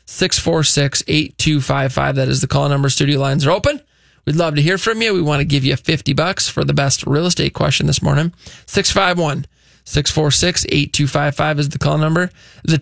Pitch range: 140-175 Hz